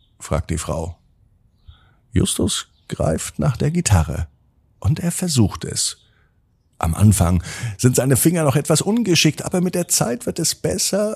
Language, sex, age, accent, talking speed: German, male, 50-69, German, 145 wpm